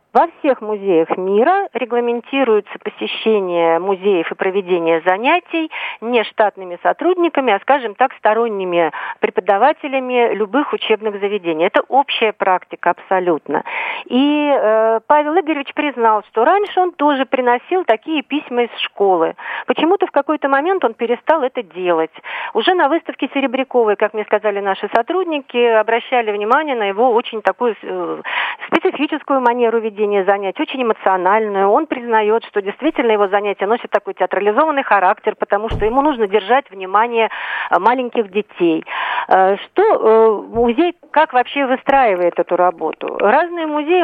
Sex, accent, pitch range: female, native, 200-285 Hz